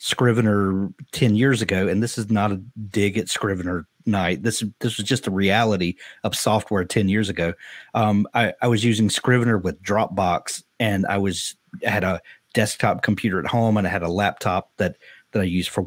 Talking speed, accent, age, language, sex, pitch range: 195 wpm, American, 30-49, English, male, 95-115 Hz